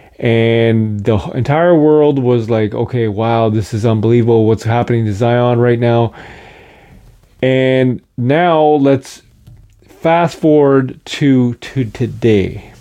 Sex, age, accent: male, 30-49, American